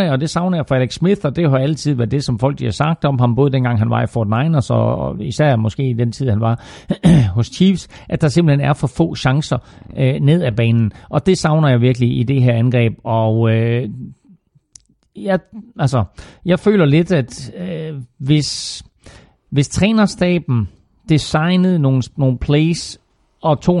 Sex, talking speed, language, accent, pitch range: male, 190 wpm, Danish, native, 115-150 Hz